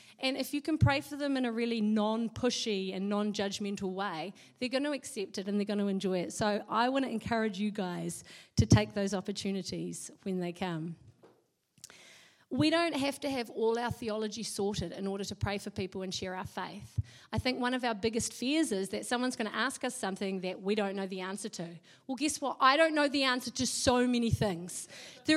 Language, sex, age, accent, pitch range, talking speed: English, female, 30-49, Australian, 210-290 Hz, 220 wpm